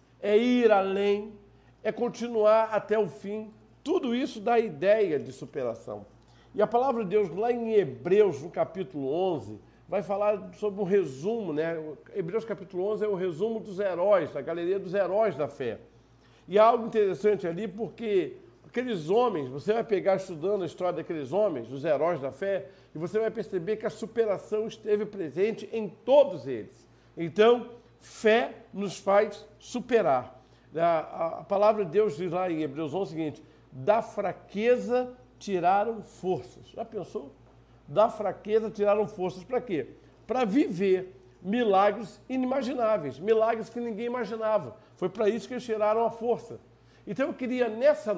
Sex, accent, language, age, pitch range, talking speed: male, Brazilian, Portuguese, 50-69, 175-225 Hz, 160 wpm